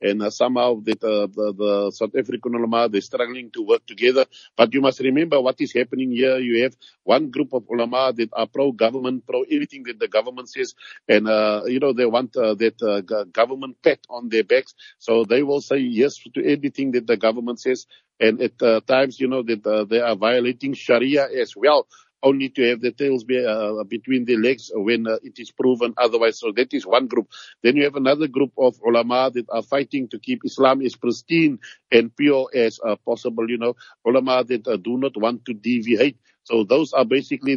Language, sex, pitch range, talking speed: English, male, 115-140 Hz, 205 wpm